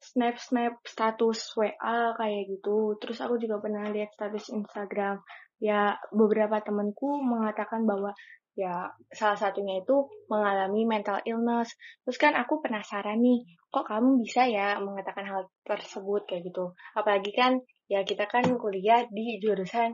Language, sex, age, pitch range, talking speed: Indonesian, female, 20-39, 200-235 Hz, 140 wpm